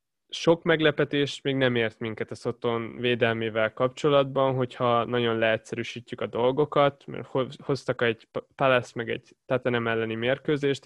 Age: 20-39